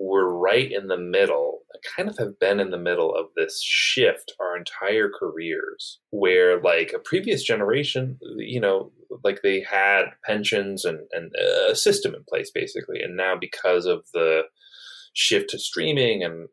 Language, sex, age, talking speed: English, male, 30-49, 165 wpm